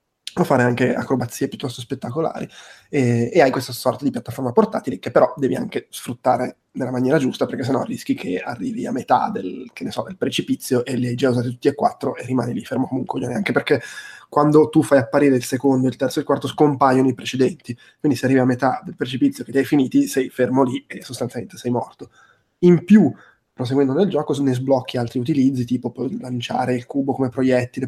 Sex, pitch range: male, 125-140 Hz